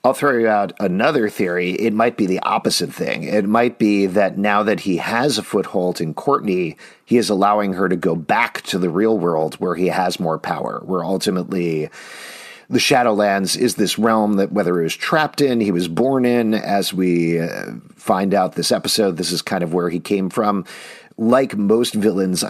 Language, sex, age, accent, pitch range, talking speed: English, male, 40-59, American, 90-110 Hz, 195 wpm